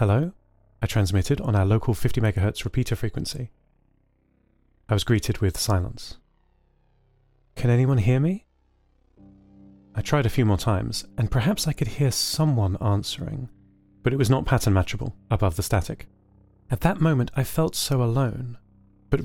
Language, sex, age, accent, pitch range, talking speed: English, male, 30-49, British, 100-145 Hz, 150 wpm